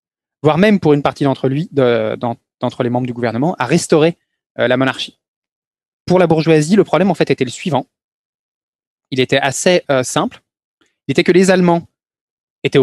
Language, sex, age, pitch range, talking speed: French, male, 20-39, 135-185 Hz, 170 wpm